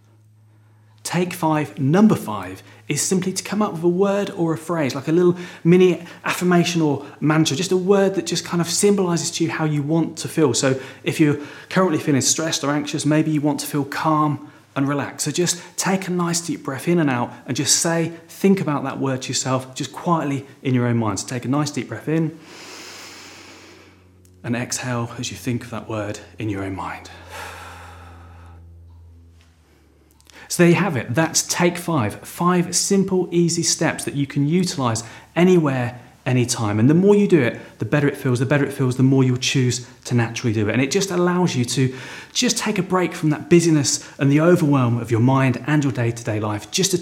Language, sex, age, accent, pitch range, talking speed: English, male, 30-49, British, 115-165 Hz, 205 wpm